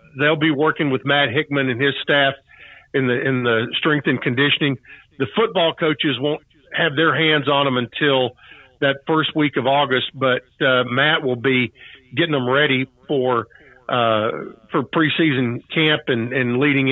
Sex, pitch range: male, 130-150 Hz